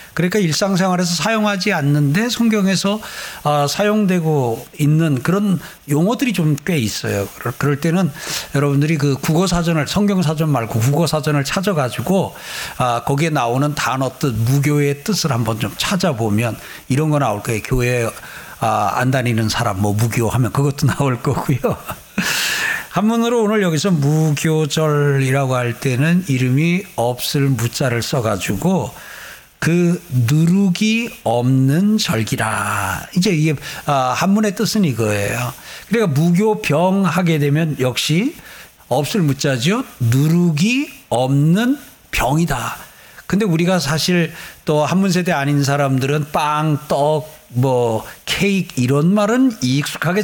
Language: Korean